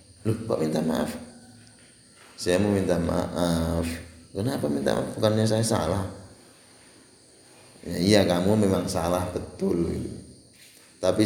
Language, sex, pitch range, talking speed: Indonesian, male, 85-110 Hz, 110 wpm